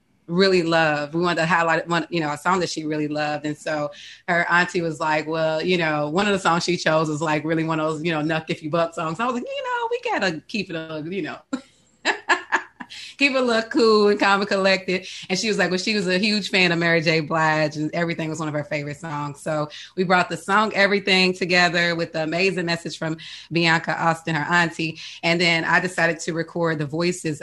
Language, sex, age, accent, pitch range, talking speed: English, female, 30-49, American, 155-175 Hz, 240 wpm